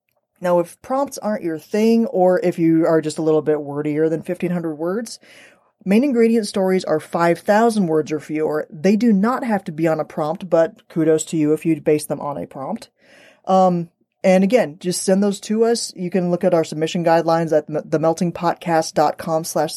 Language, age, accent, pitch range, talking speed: English, 20-39, American, 160-200 Hz, 190 wpm